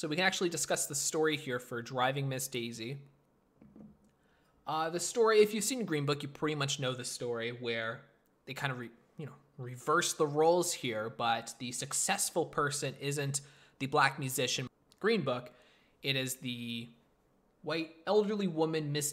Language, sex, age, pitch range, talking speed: English, male, 20-39, 130-160 Hz, 170 wpm